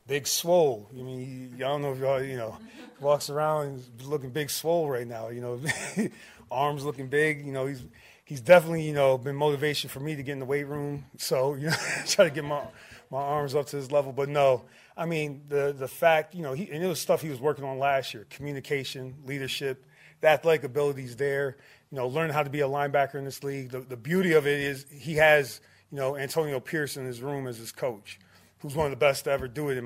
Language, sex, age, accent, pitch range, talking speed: English, male, 30-49, American, 130-150 Hz, 240 wpm